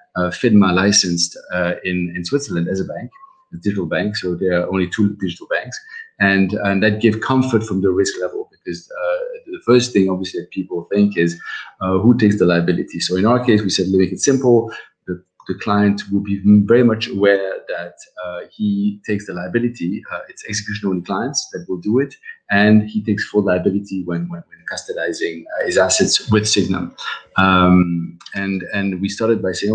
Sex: male